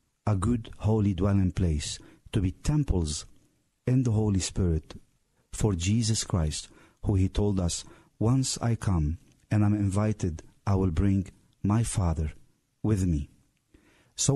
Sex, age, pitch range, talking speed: male, 50-69, 90-115 Hz, 140 wpm